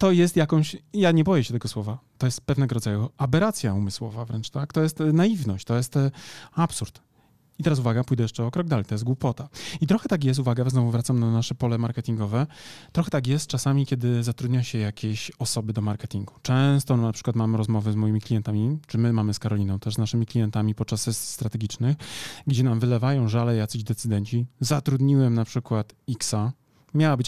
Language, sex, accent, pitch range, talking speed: Polish, male, native, 115-140 Hz, 195 wpm